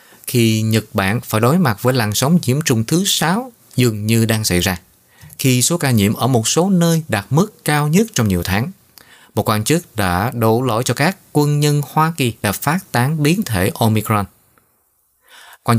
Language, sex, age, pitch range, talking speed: Vietnamese, male, 20-39, 110-155 Hz, 200 wpm